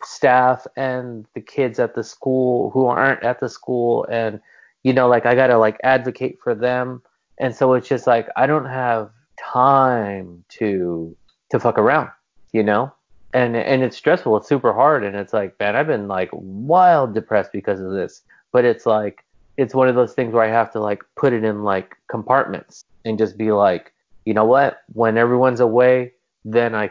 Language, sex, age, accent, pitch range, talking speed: English, male, 30-49, American, 105-125 Hz, 190 wpm